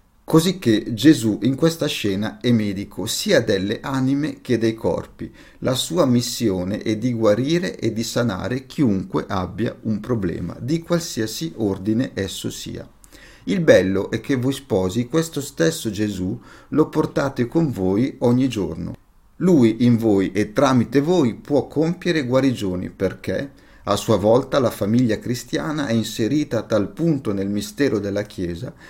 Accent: native